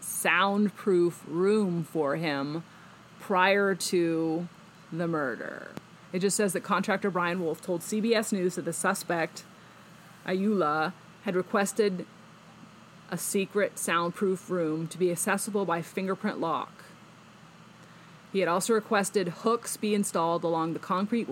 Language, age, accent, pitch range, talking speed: English, 30-49, American, 165-195 Hz, 125 wpm